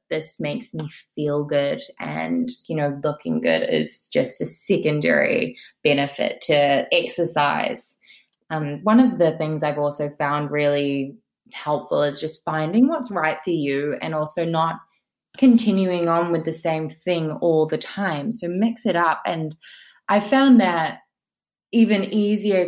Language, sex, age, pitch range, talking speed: English, female, 20-39, 160-225 Hz, 150 wpm